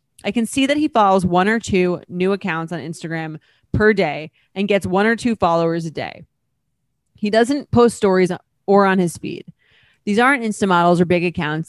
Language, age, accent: English, 30-49, American